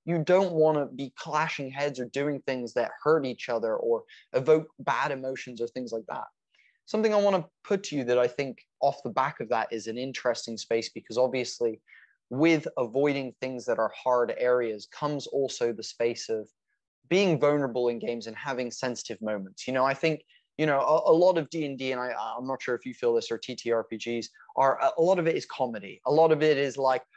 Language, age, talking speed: English, 20-39, 220 wpm